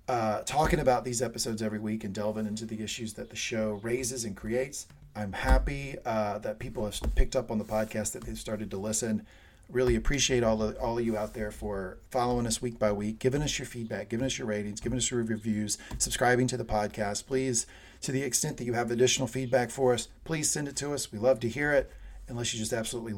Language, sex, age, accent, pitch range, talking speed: English, male, 40-59, American, 105-125 Hz, 235 wpm